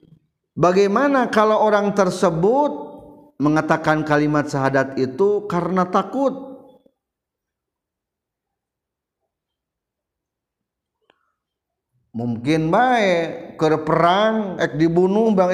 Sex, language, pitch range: male, Indonesian, 130-200 Hz